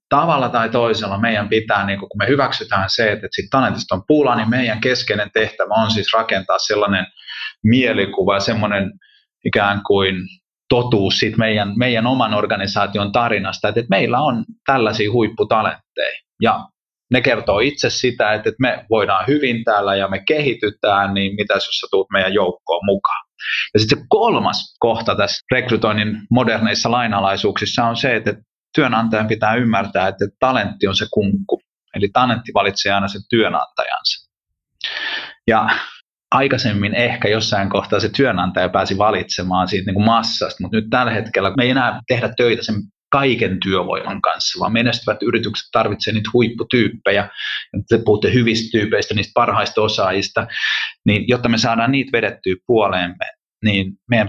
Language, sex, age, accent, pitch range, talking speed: Finnish, male, 30-49, native, 100-120 Hz, 150 wpm